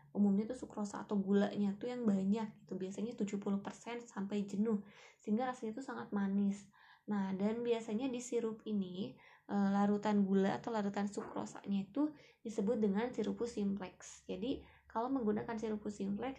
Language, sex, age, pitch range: Indonesian, female, 20-39, 200-235 Hz